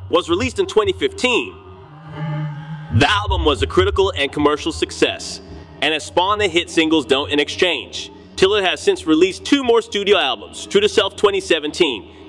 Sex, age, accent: male, 30-49, American